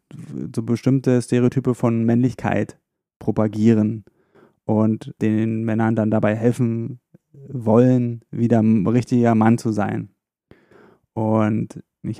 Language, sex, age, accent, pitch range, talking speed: German, male, 20-39, German, 110-125 Hz, 105 wpm